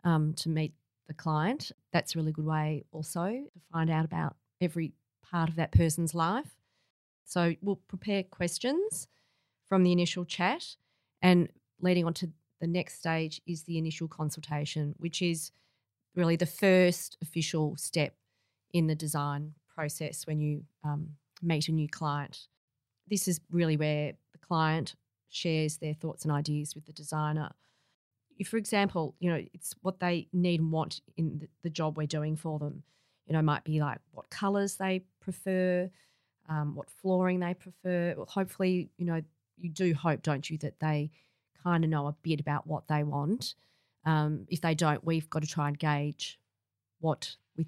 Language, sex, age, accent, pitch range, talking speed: English, female, 30-49, Australian, 150-175 Hz, 170 wpm